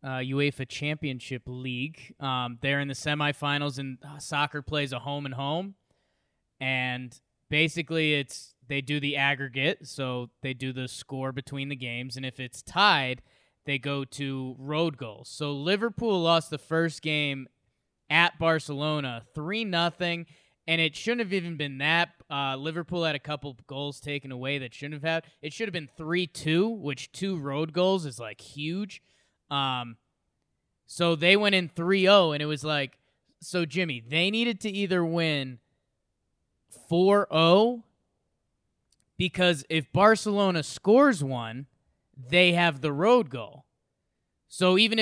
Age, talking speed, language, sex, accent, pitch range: 20-39, 150 wpm, English, male, American, 135-180 Hz